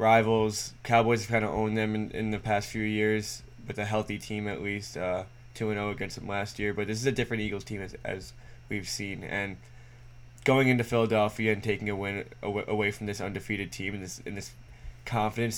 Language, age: English, 10-29